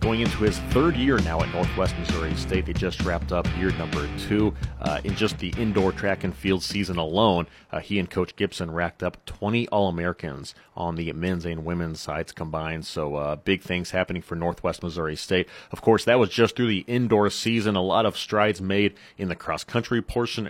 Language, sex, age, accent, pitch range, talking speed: English, male, 30-49, American, 90-110 Hz, 205 wpm